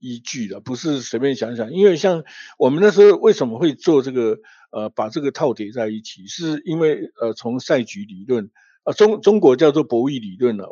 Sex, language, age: male, Chinese, 50-69